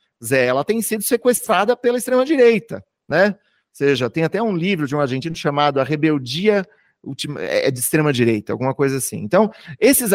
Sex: male